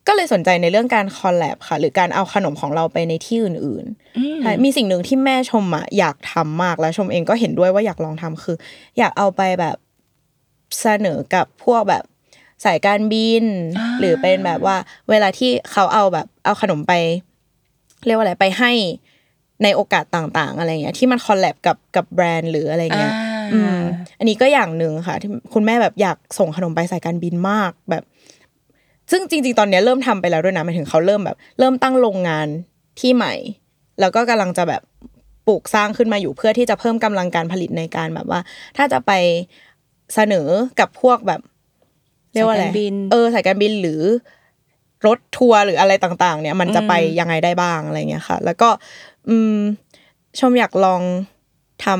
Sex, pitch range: female, 170-220 Hz